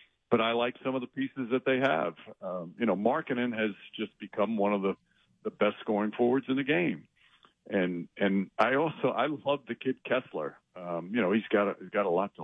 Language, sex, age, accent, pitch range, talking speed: English, male, 50-69, American, 100-120 Hz, 225 wpm